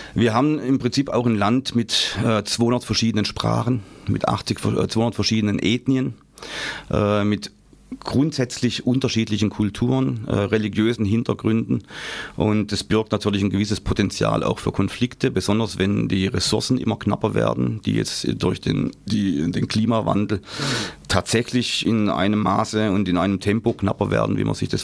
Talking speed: 145 wpm